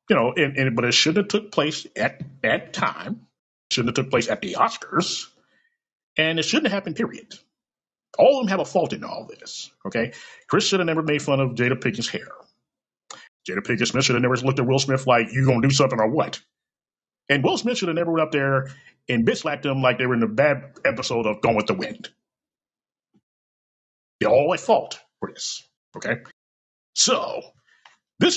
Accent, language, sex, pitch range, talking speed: American, English, male, 115-150 Hz, 205 wpm